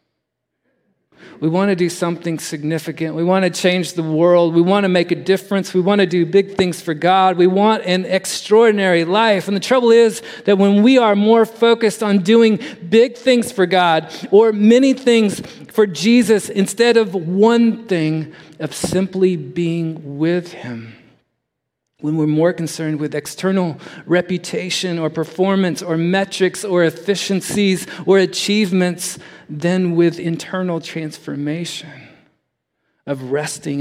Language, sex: English, male